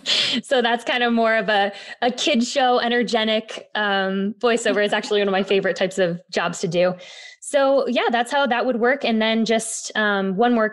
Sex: female